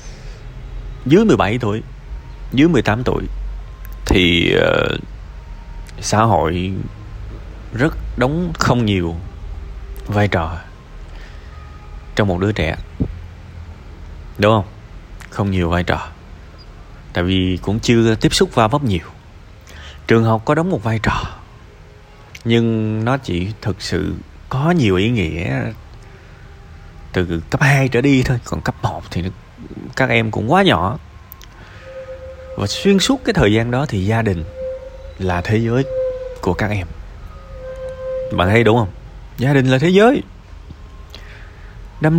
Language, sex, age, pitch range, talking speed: Vietnamese, male, 20-39, 85-120 Hz, 130 wpm